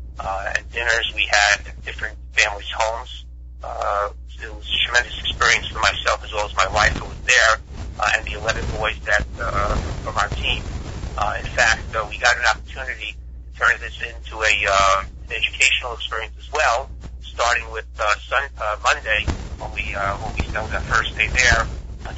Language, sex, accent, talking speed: English, male, American, 190 wpm